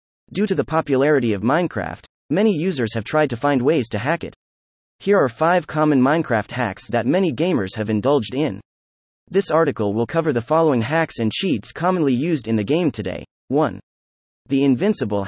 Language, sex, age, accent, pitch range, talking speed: English, male, 30-49, American, 110-155 Hz, 180 wpm